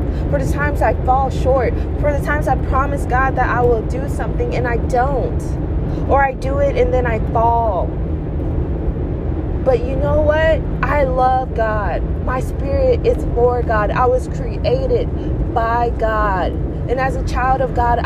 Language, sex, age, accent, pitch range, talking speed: English, female, 20-39, American, 70-75 Hz, 170 wpm